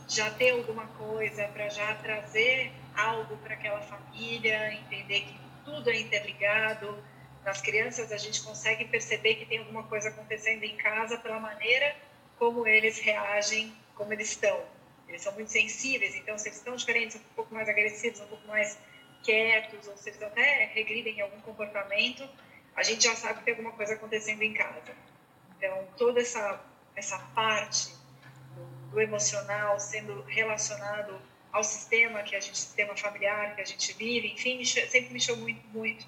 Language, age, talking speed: Portuguese, 40-59, 165 wpm